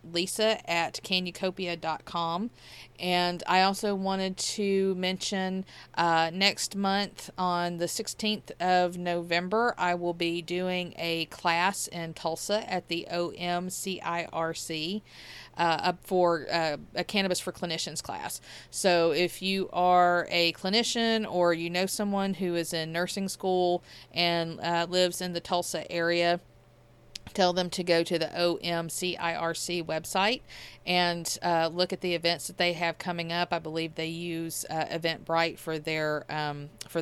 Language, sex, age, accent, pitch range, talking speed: English, female, 40-59, American, 160-180 Hz, 145 wpm